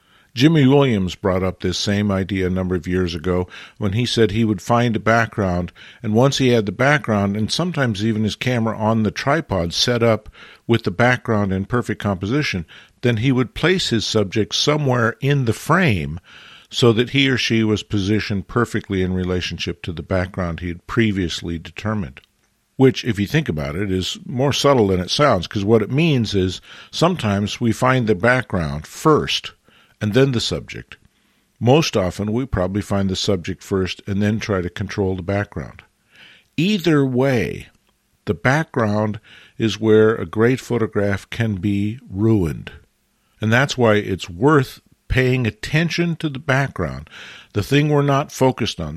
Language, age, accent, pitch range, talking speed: English, 50-69, American, 95-130 Hz, 170 wpm